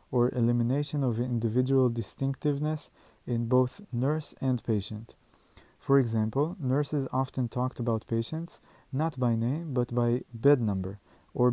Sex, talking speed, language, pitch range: male, 130 wpm, Hebrew, 115-140 Hz